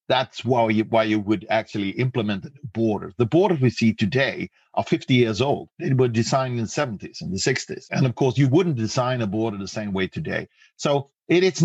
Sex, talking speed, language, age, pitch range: male, 205 wpm, English, 50-69, 105-125 Hz